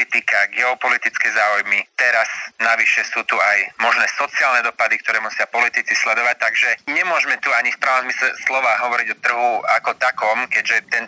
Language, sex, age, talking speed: Slovak, male, 30-49, 150 wpm